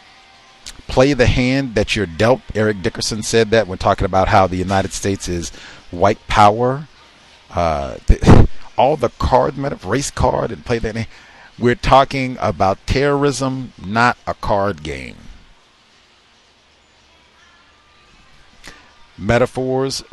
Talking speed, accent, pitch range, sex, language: 115 wpm, American, 95-125 Hz, male, English